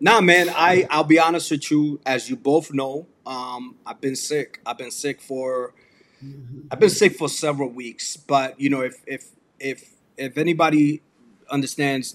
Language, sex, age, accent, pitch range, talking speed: English, male, 30-49, American, 125-150 Hz, 175 wpm